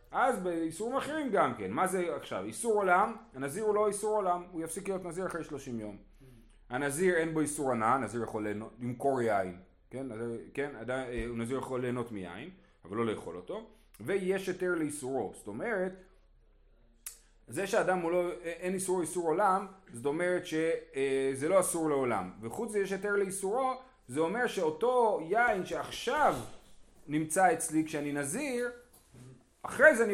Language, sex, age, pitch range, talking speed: Hebrew, male, 30-49, 130-195 Hz, 155 wpm